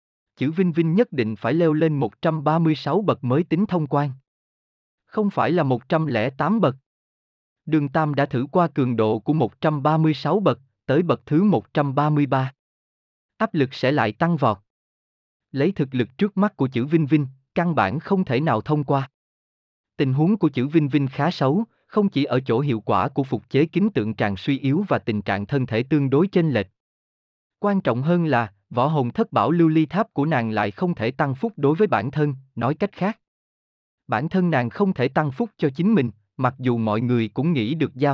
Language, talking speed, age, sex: Vietnamese, 205 wpm, 20-39, male